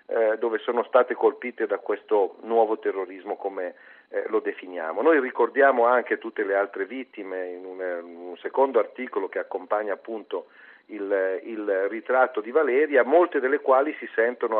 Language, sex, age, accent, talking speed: Italian, male, 50-69, native, 140 wpm